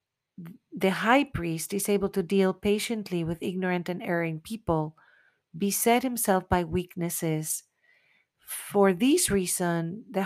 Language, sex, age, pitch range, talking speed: English, female, 40-59, 170-200 Hz, 125 wpm